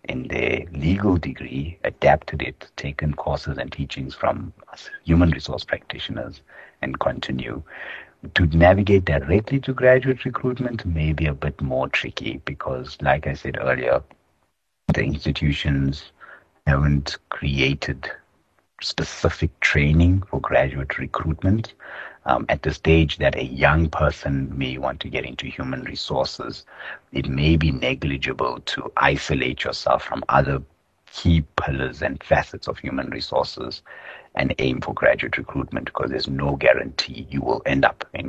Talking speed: 135 wpm